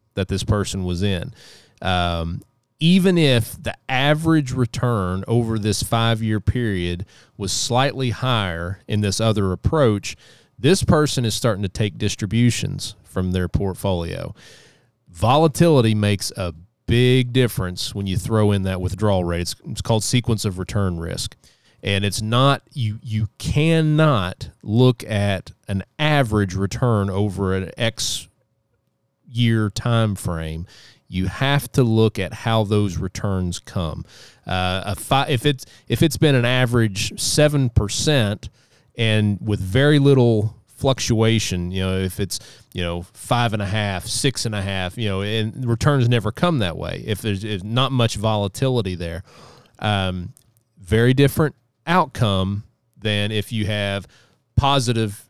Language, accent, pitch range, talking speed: English, American, 100-125 Hz, 145 wpm